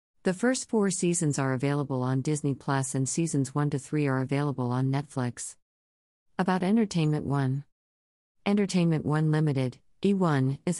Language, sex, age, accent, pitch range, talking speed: English, female, 50-69, American, 130-165 Hz, 145 wpm